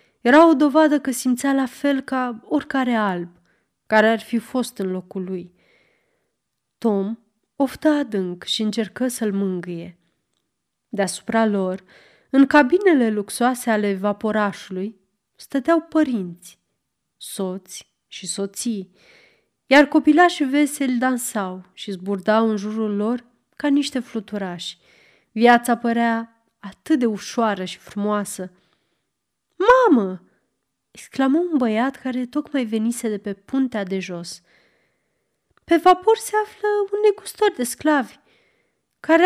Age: 30-49